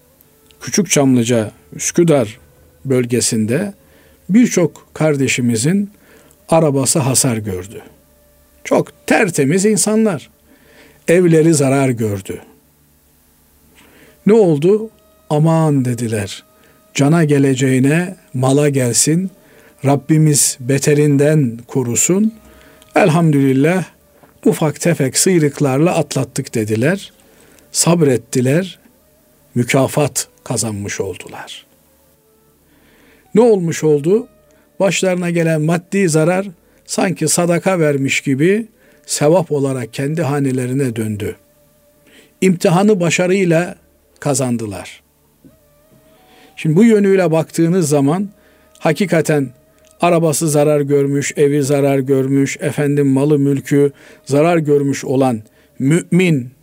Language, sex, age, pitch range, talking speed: Turkish, male, 50-69, 130-175 Hz, 75 wpm